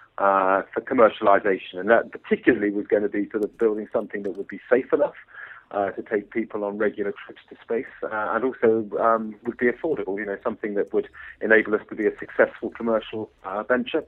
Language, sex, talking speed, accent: English, male, 215 wpm, British